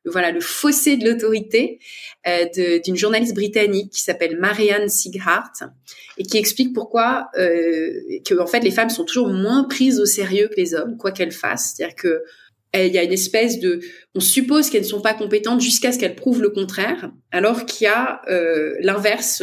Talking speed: 200 wpm